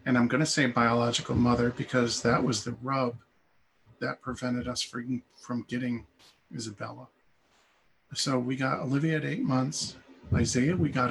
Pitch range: 120-145 Hz